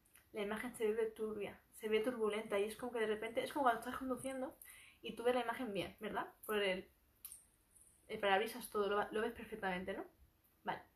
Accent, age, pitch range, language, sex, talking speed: Spanish, 20-39, 215-255 Hz, Spanish, female, 205 wpm